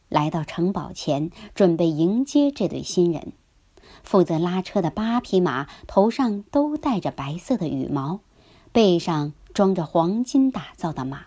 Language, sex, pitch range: Chinese, male, 160-215 Hz